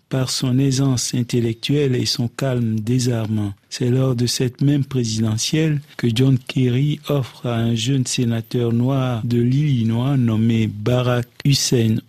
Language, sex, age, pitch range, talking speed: French, male, 50-69, 120-140 Hz, 140 wpm